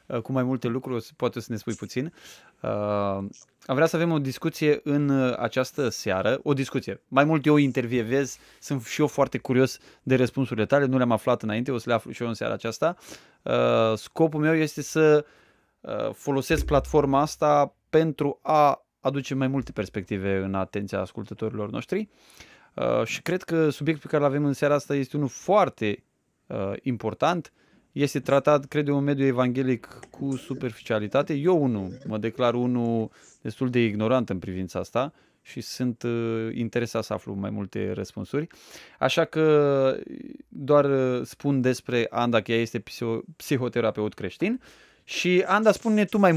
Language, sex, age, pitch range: Romanian, male, 20-39, 115-145 Hz